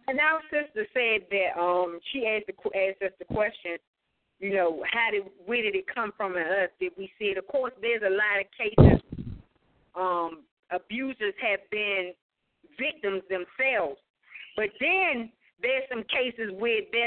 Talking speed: 165 wpm